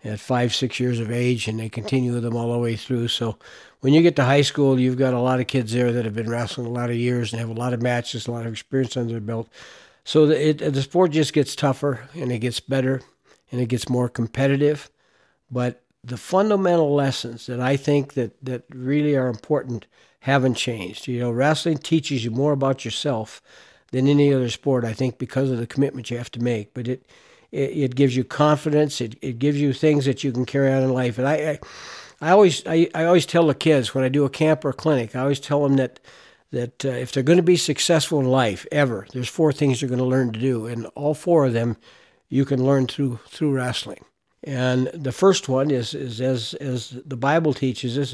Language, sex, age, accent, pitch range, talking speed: English, male, 60-79, American, 120-145 Hz, 235 wpm